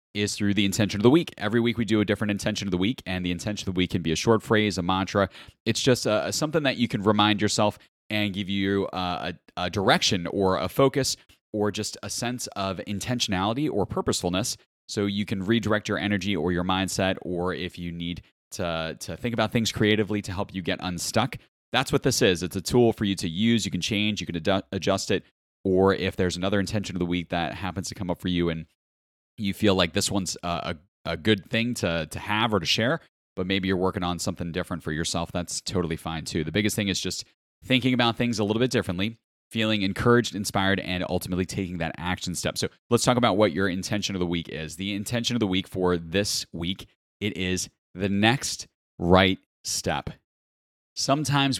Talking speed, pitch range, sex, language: 220 wpm, 90-110 Hz, male, English